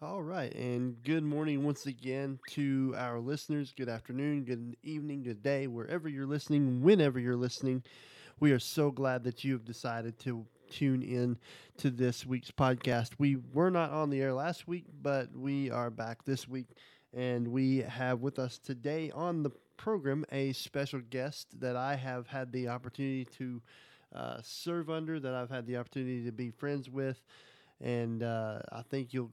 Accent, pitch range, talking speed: American, 125-145 Hz, 180 wpm